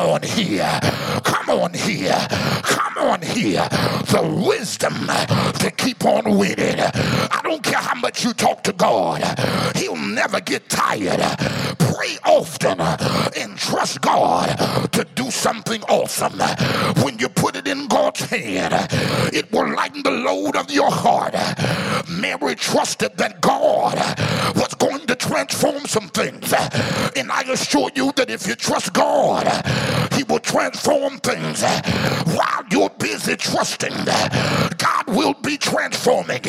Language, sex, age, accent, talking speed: English, male, 50-69, American, 135 wpm